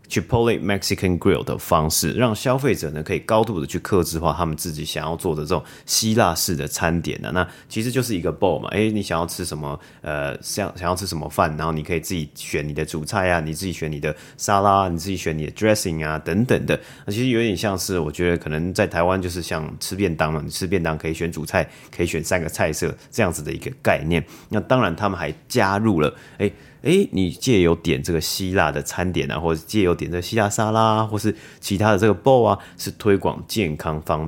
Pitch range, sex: 80-105 Hz, male